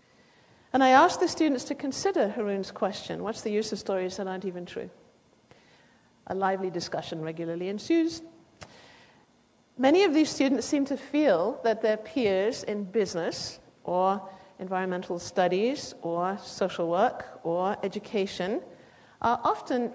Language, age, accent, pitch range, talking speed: English, 60-79, British, 195-285 Hz, 135 wpm